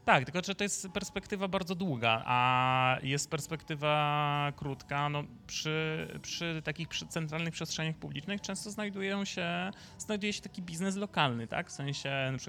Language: Polish